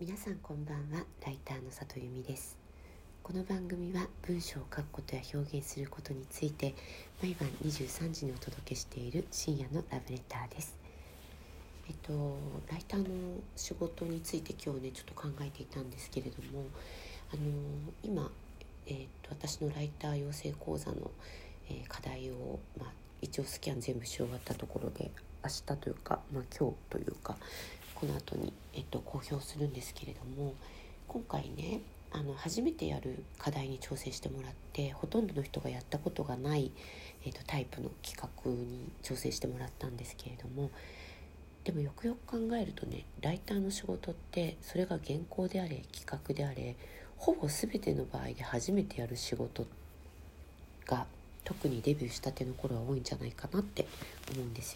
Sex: female